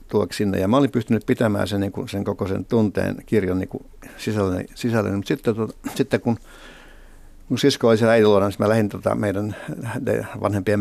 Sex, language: male, Finnish